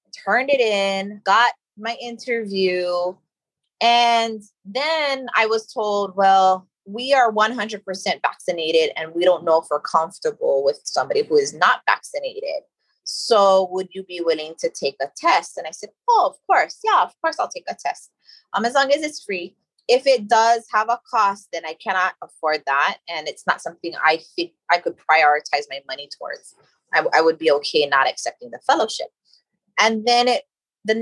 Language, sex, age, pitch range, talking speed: English, female, 20-39, 180-275 Hz, 180 wpm